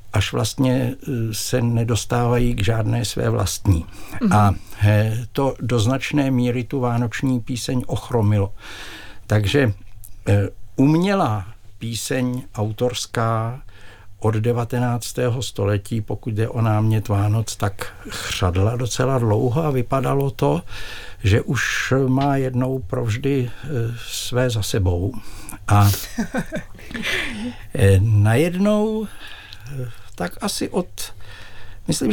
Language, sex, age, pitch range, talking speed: Czech, male, 60-79, 105-130 Hz, 95 wpm